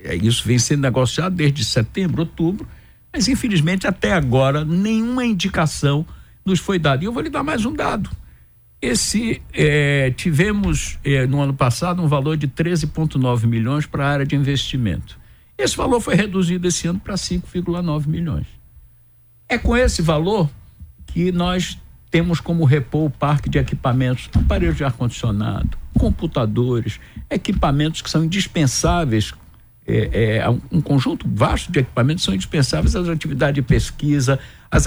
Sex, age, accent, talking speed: male, 60-79, Brazilian, 145 wpm